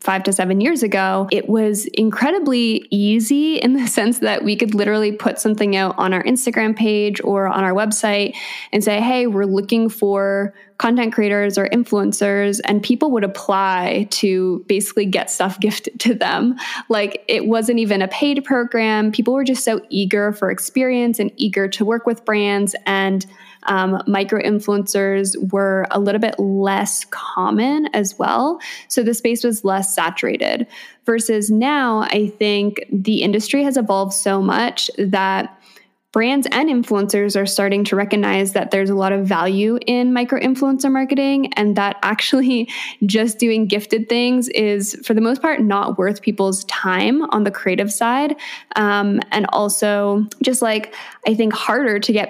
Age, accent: 10-29, American